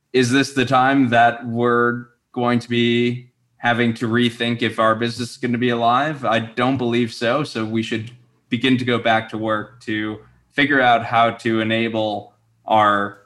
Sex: male